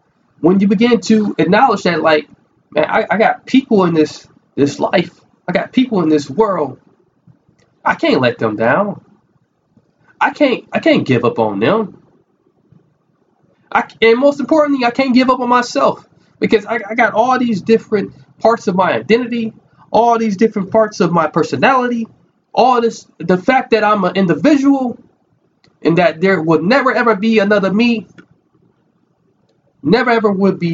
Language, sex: English, male